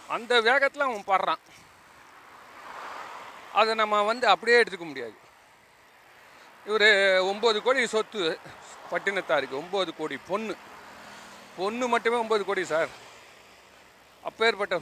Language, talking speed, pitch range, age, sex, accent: Tamil, 95 wpm, 170-225 Hz, 40-59, male, native